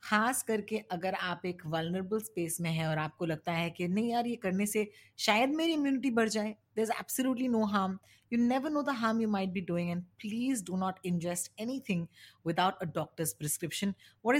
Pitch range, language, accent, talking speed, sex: 170-220 Hz, Hindi, native, 210 wpm, female